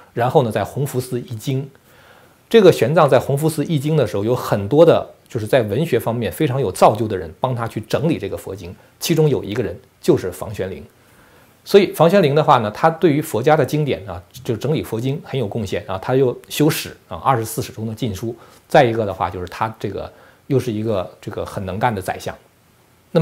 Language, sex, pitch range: Chinese, male, 110-150 Hz